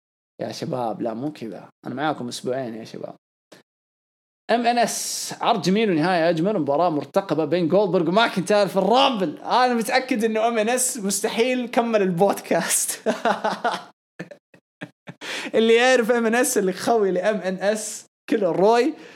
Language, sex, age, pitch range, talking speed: English, male, 20-39, 155-210 Hz, 130 wpm